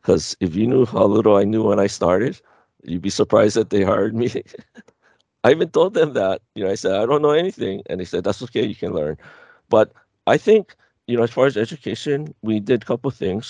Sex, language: male, English